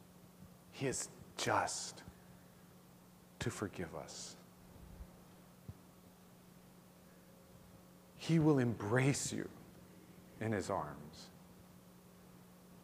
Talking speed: 55 wpm